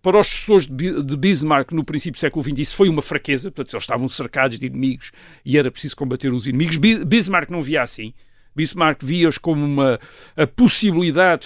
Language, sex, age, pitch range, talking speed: Portuguese, male, 50-69, 130-175 Hz, 185 wpm